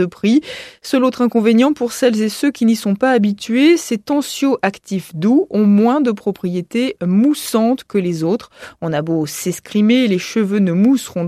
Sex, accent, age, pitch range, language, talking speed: female, French, 20-39, 170-240 Hz, French, 175 wpm